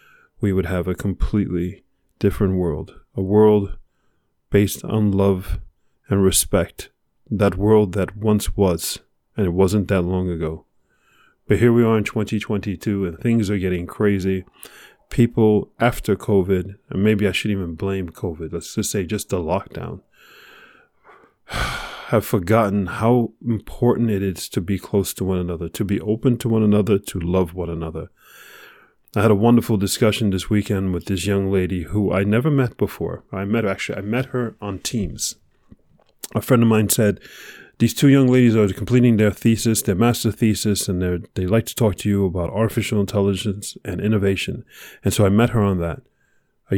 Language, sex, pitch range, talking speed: English, male, 95-110 Hz, 175 wpm